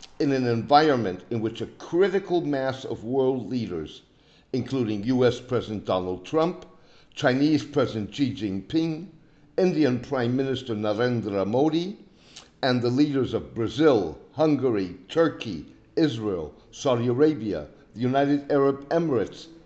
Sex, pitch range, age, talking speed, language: male, 115-150 Hz, 60-79, 120 wpm, English